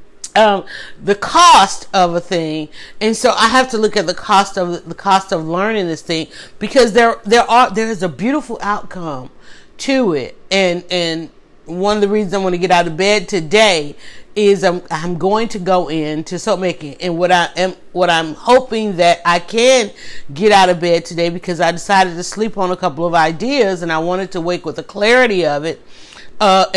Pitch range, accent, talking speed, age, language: 175-220 Hz, American, 205 wpm, 40-59, English